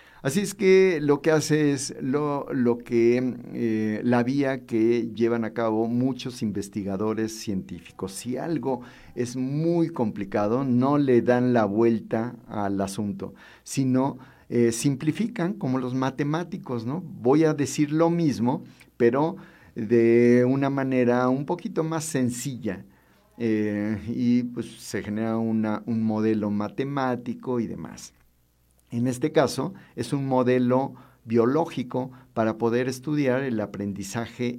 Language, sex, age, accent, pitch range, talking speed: Spanish, male, 50-69, Mexican, 110-140 Hz, 130 wpm